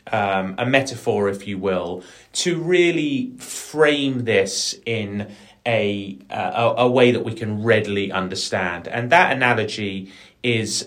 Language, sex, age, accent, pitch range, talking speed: English, male, 30-49, British, 105-135 Hz, 135 wpm